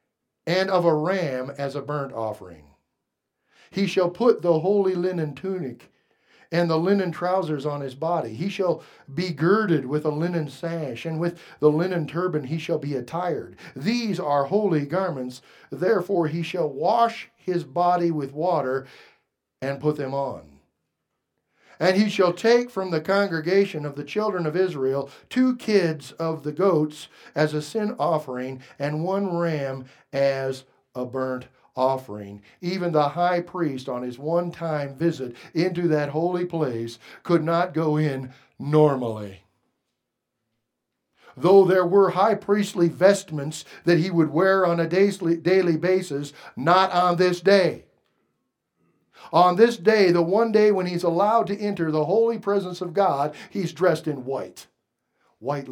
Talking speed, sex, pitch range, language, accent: 150 wpm, male, 145-190 Hz, English, American